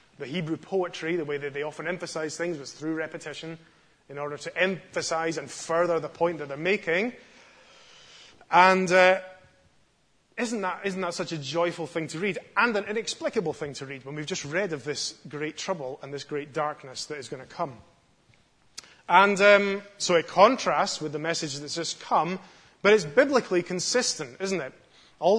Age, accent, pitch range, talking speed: 30-49, British, 150-185 Hz, 180 wpm